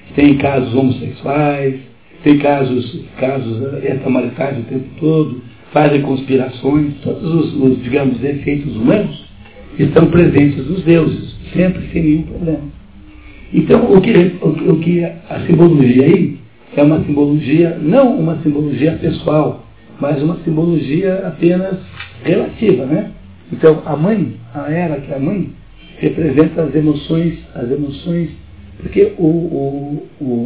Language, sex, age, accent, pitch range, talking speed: Portuguese, male, 60-79, Brazilian, 130-160 Hz, 125 wpm